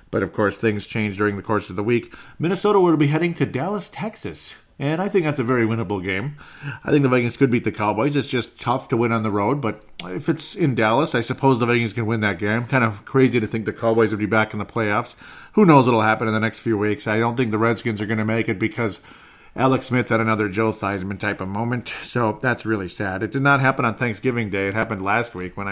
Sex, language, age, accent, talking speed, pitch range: male, English, 40-59, American, 265 wpm, 105-130 Hz